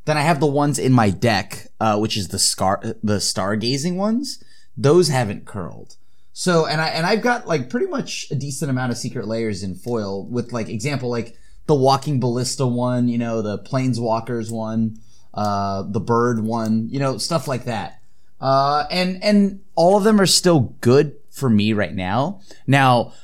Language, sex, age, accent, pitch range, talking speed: English, male, 30-49, American, 110-155 Hz, 185 wpm